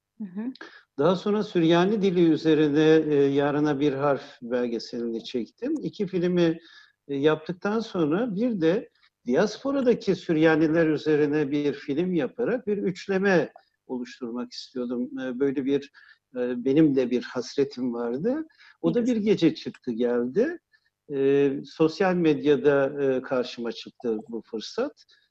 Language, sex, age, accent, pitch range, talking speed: Turkish, male, 60-79, native, 130-175 Hz, 120 wpm